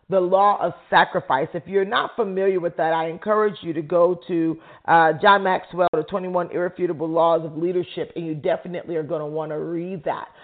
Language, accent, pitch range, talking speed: English, American, 170-215 Hz, 200 wpm